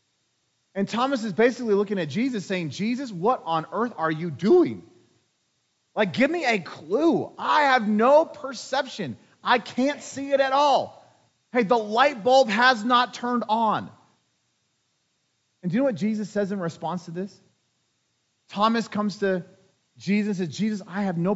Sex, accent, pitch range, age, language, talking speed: male, American, 135-215 Hz, 30-49, English, 165 wpm